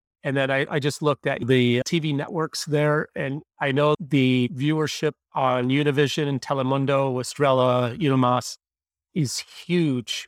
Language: English